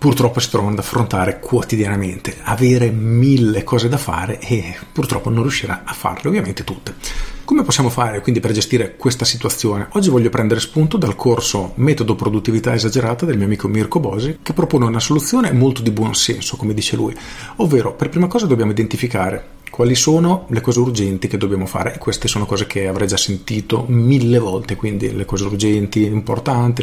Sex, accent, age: male, native, 40-59